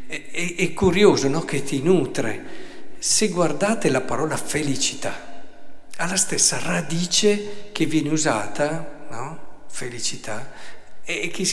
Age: 60-79